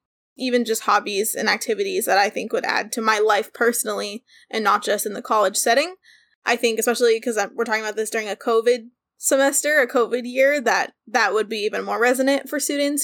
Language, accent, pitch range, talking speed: English, American, 220-260 Hz, 205 wpm